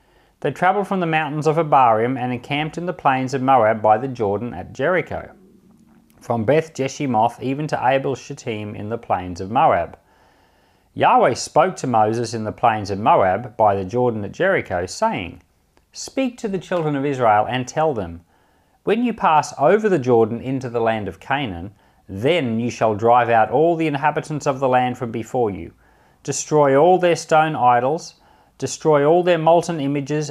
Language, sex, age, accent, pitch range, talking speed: English, male, 40-59, Australian, 115-155 Hz, 180 wpm